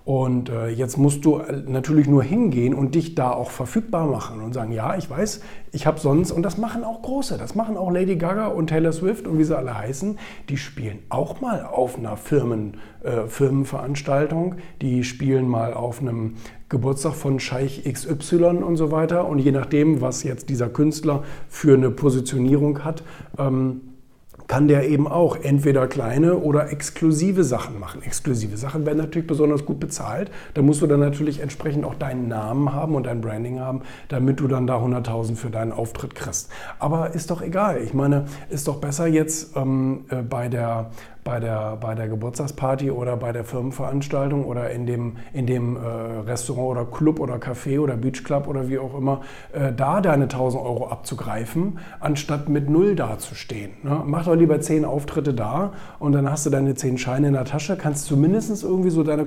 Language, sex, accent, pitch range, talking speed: German, male, German, 125-155 Hz, 185 wpm